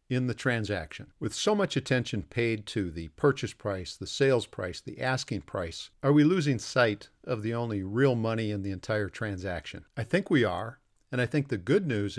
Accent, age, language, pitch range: American, 50-69, English, 105-135 Hz